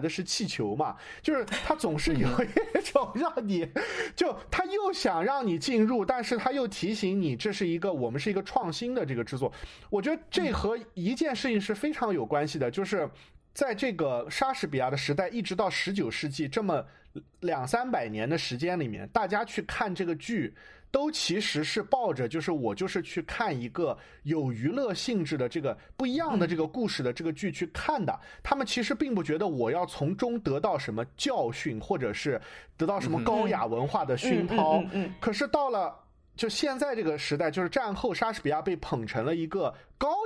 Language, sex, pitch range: Chinese, male, 155-235 Hz